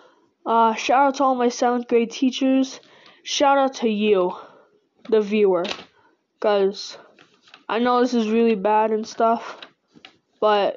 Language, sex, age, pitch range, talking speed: English, female, 10-29, 215-255 Hz, 140 wpm